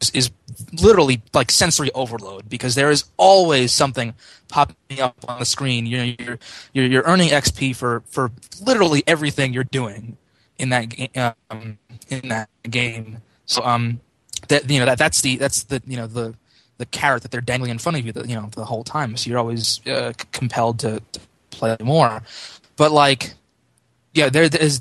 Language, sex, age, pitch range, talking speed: English, male, 20-39, 115-140 Hz, 185 wpm